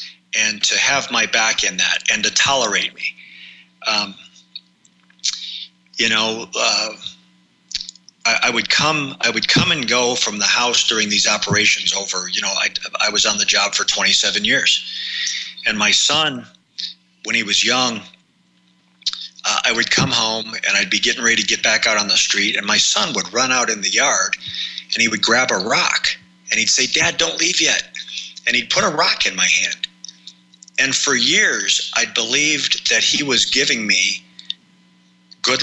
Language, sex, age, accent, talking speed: English, male, 40-59, American, 180 wpm